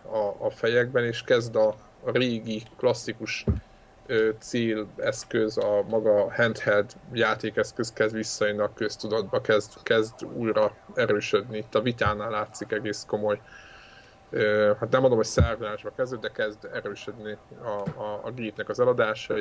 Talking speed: 135 wpm